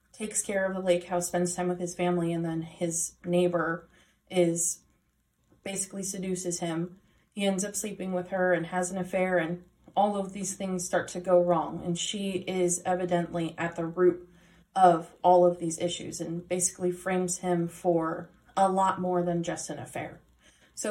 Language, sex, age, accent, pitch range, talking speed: English, female, 30-49, American, 175-195 Hz, 180 wpm